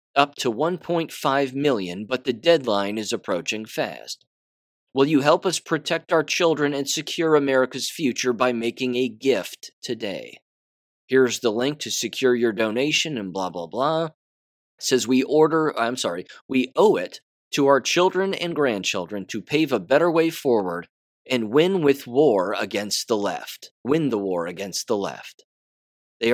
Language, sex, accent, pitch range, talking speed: English, male, American, 115-150 Hz, 160 wpm